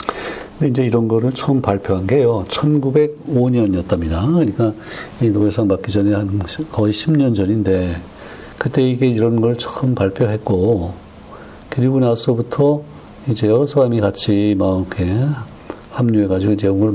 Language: Korean